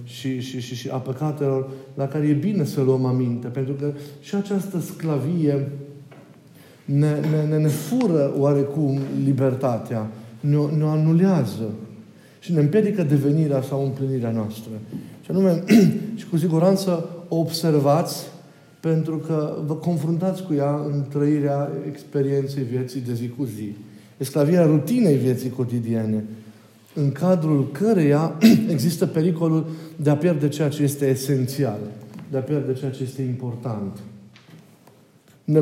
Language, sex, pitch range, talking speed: Romanian, male, 125-155 Hz, 130 wpm